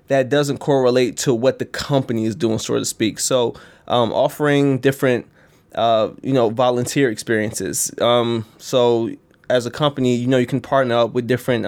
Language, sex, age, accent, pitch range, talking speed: English, male, 20-39, American, 120-140 Hz, 175 wpm